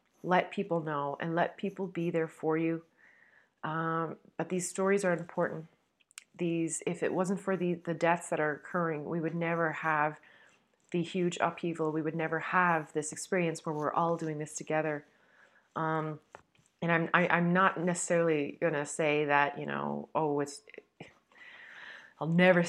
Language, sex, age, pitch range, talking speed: English, female, 30-49, 145-170 Hz, 165 wpm